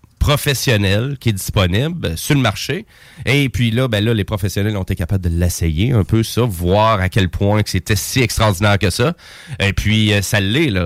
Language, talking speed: French, 200 wpm